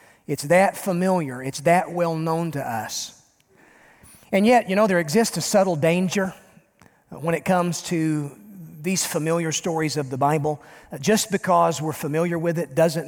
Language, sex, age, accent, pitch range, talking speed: English, male, 40-59, American, 155-190 Hz, 160 wpm